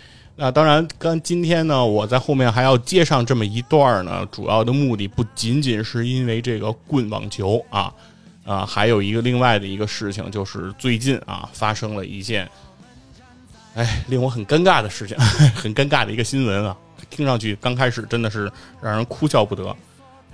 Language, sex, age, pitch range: Chinese, male, 20-39, 105-135 Hz